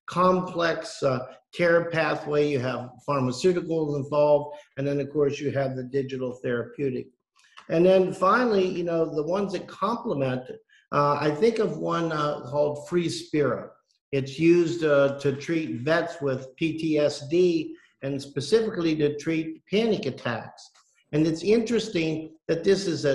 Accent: American